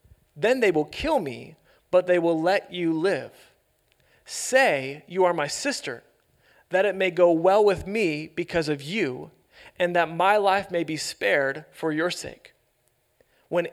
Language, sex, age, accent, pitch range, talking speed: English, male, 30-49, American, 165-210 Hz, 160 wpm